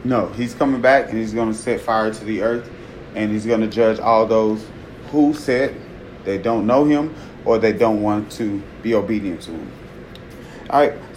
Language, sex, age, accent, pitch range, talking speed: English, male, 30-49, American, 115-160 Hz, 200 wpm